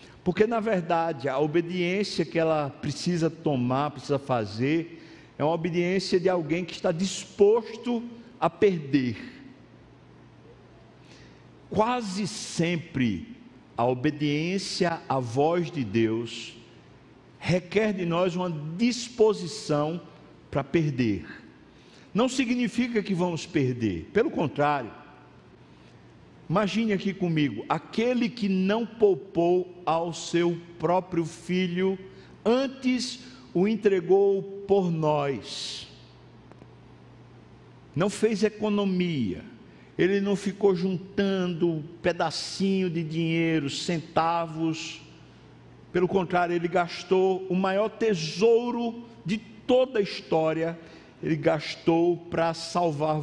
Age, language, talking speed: 60-79, Portuguese, 95 wpm